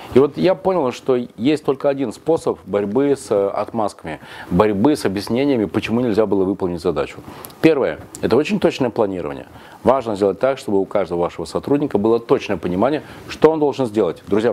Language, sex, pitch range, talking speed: Russian, male, 100-150 Hz, 170 wpm